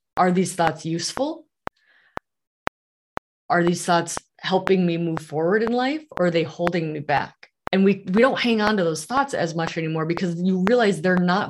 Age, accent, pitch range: 30-49, American, 165-205 Hz